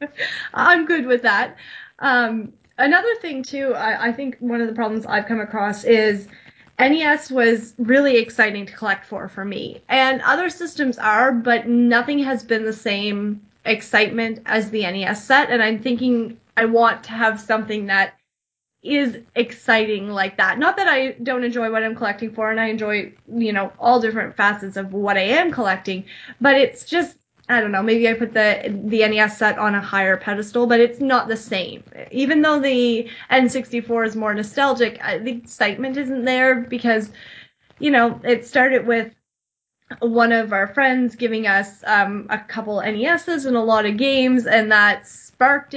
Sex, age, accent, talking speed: female, 20-39, American, 175 wpm